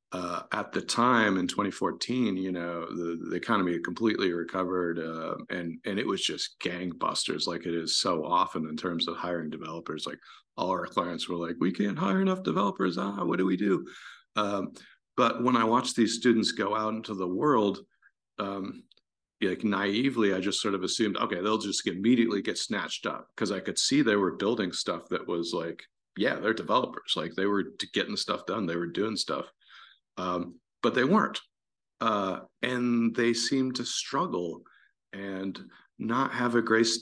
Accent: American